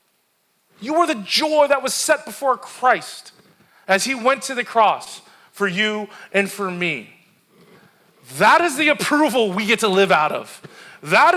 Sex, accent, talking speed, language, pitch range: male, American, 165 wpm, English, 210-295 Hz